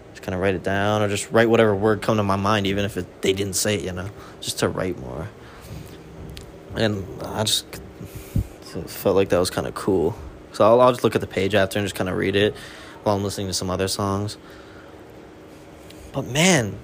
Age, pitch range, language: 20-39, 95-140 Hz, English